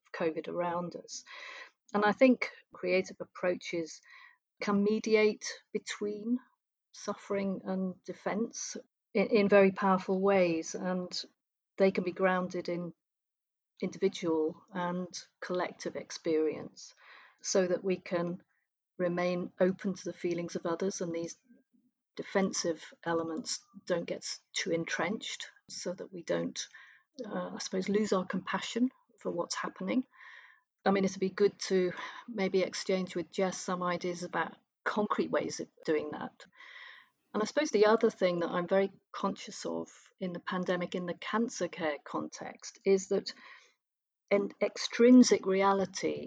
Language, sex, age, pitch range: English, female, 40-59, 175-215 Hz